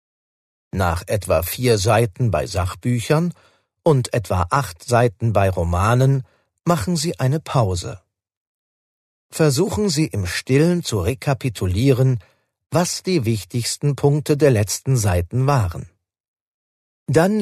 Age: 40-59